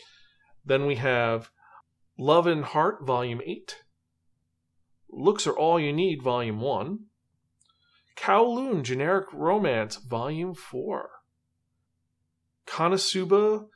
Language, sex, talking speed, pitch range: English, male, 90 wpm, 105-170 Hz